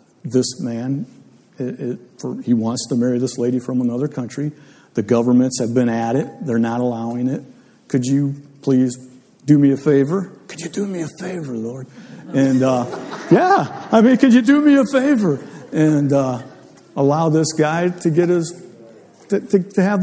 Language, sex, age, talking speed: English, male, 50-69, 185 wpm